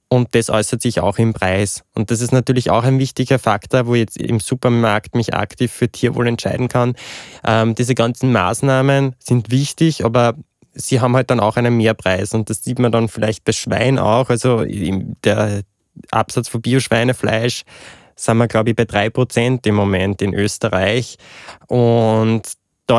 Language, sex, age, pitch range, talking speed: German, male, 20-39, 110-125 Hz, 175 wpm